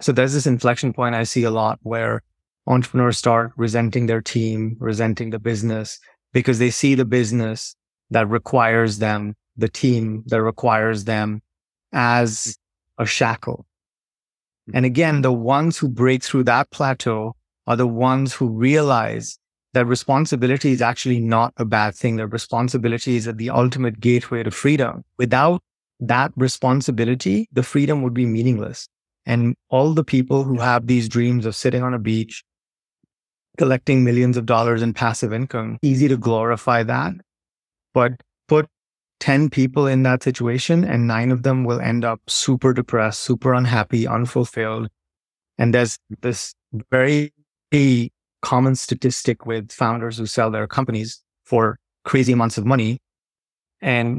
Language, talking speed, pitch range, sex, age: English, 150 wpm, 115-130 Hz, male, 30-49